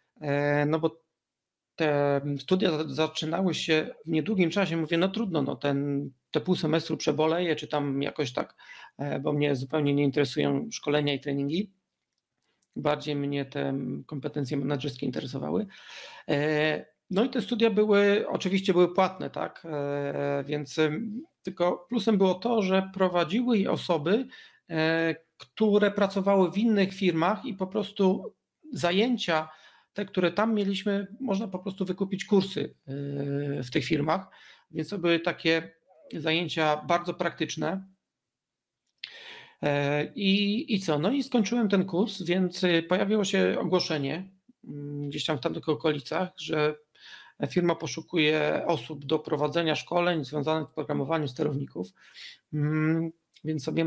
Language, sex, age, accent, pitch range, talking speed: Polish, male, 40-59, native, 150-195 Hz, 125 wpm